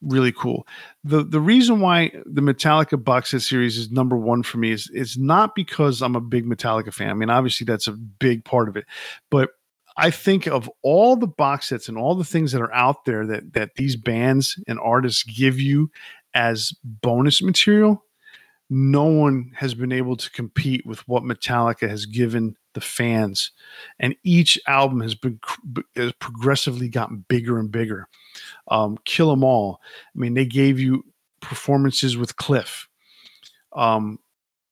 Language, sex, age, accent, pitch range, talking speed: English, male, 50-69, American, 120-150 Hz, 170 wpm